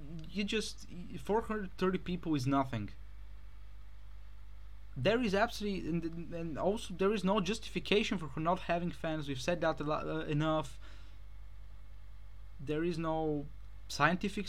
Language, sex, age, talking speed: English, male, 20-39, 130 wpm